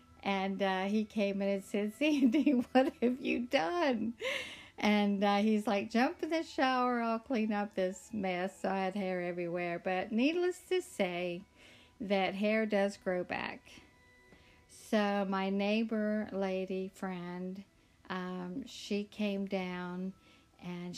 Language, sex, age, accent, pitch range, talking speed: English, female, 50-69, American, 185-225 Hz, 140 wpm